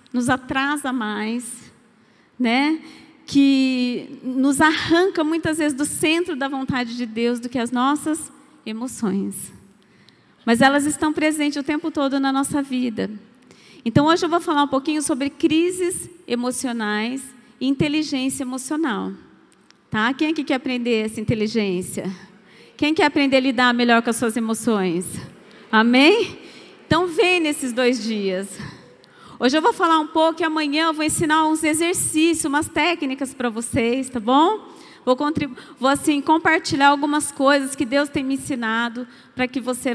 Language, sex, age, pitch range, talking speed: Portuguese, female, 30-49, 230-300 Hz, 150 wpm